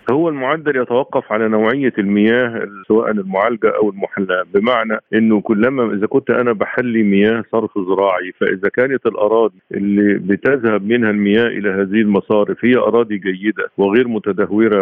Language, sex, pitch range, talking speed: Arabic, male, 100-115 Hz, 140 wpm